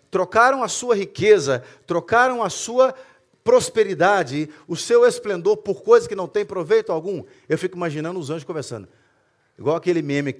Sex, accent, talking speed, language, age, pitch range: male, Brazilian, 160 wpm, Portuguese, 40-59, 135-230 Hz